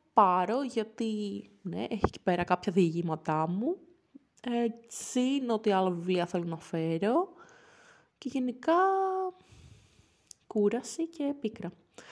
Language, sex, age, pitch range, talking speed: Greek, female, 20-39, 170-220 Hz, 110 wpm